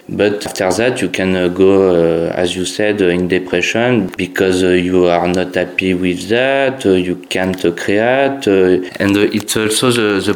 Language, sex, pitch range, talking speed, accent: English, male, 95-110 Hz, 190 wpm, French